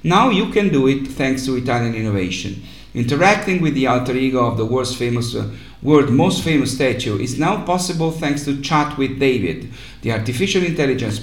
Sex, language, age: male, English, 50-69